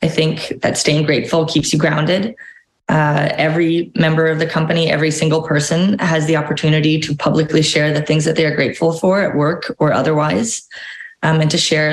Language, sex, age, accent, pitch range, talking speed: English, female, 20-39, American, 150-175 Hz, 190 wpm